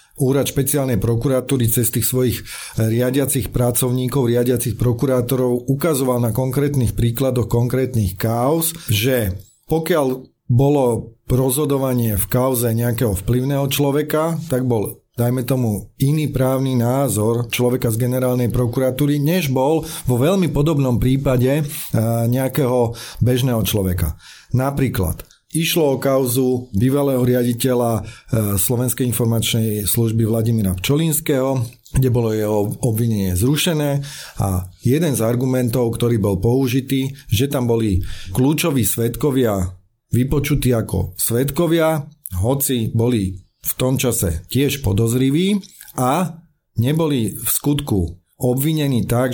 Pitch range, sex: 115-135 Hz, male